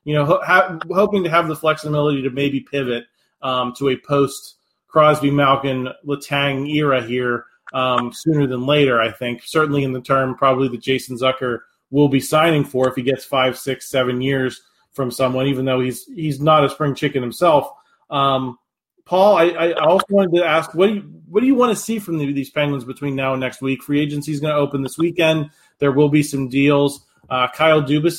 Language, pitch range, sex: English, 135-160 Hz, male